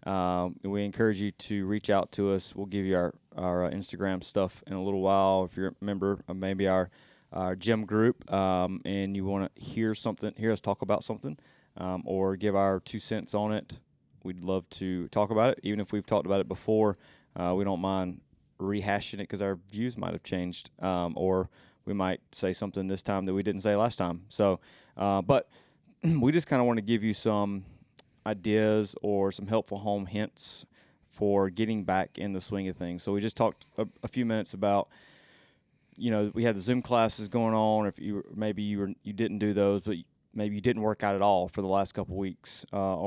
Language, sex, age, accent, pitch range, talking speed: English, male, 20-39, American, 95-105 Hz, 220 wpm